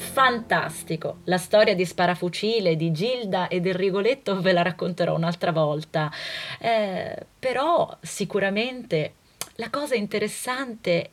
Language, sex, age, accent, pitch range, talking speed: Italian, female, 30-49, native, 170-275 Hz, 115 wpm